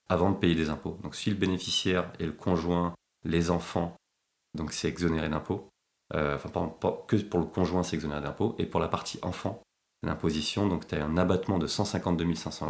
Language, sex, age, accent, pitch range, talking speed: French, male, 30-49, French, 80-95 Hz, 190 wpm